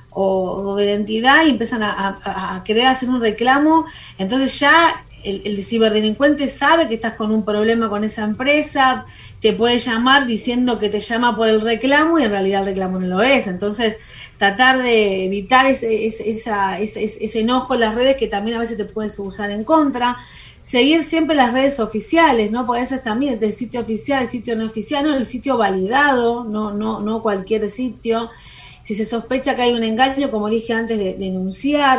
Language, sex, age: Spanish, female, 30-49